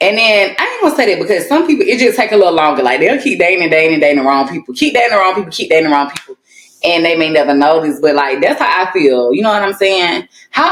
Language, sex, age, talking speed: English, female, 20-39, 300 wpm